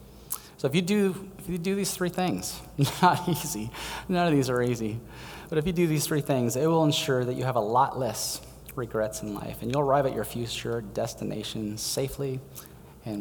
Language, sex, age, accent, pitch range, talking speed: English, male, 30-49, American, 100-130 Hz, 205 wpm